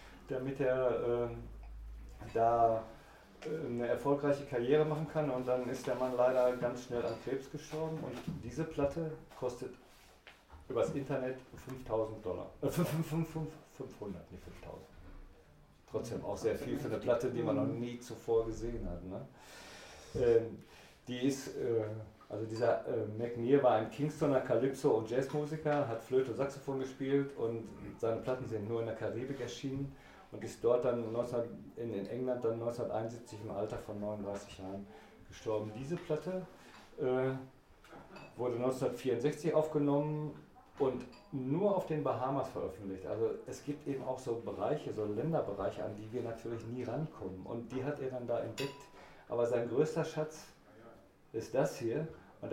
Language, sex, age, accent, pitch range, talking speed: English, male, 40-59, German, 115-145 Hz, 155 wpm